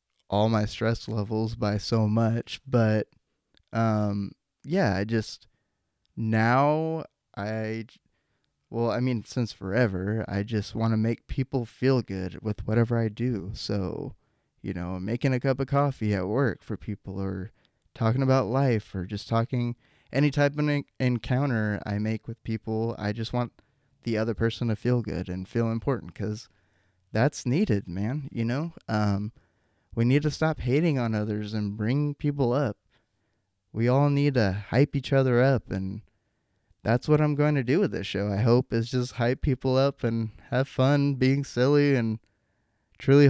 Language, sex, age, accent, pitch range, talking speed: English, male, 20-39, American, 105-130 Hz, 165 wpm